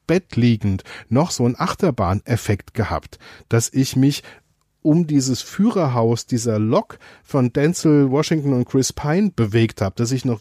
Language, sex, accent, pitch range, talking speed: German, male, German, 115-150 Hz, 150 wpm